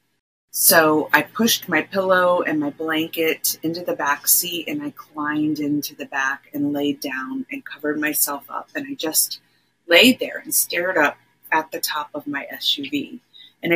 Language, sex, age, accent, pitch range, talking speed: English, female, 30-49, American, 145-180 Hz, 175 wpm